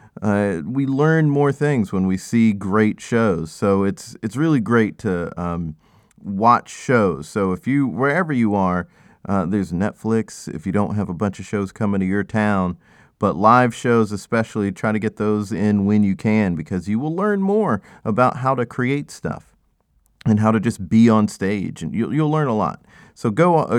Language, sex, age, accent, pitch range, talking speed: English, male, 40-59, American, 95-125 Hz, 195 wpm